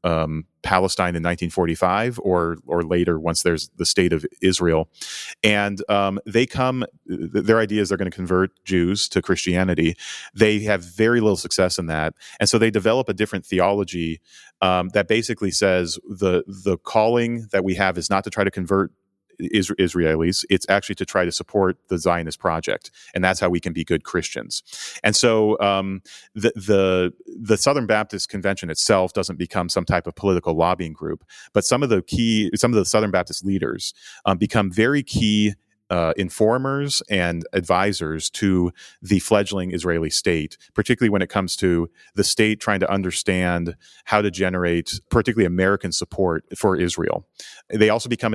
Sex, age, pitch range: male, 30-49, 90-105 Hz